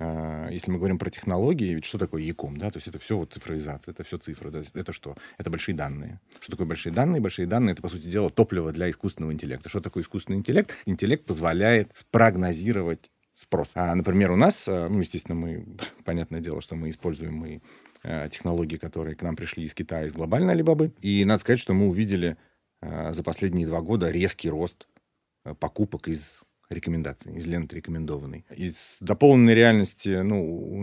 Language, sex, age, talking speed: Russian, male, 30-49, 180 wpm